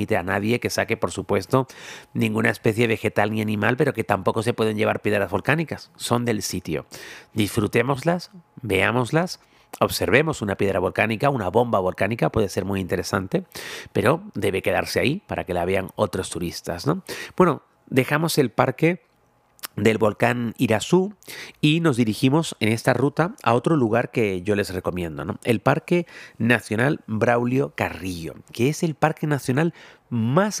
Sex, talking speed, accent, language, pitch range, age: male, 155 wpm, Mexican, Spanish, 100-130 Hz, 40-59